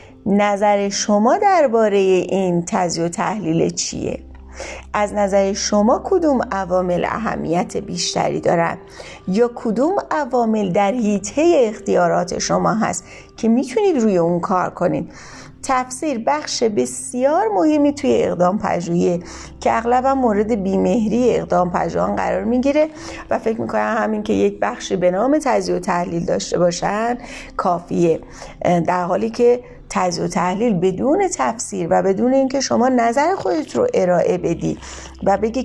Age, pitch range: 30-49, 180-245 Hz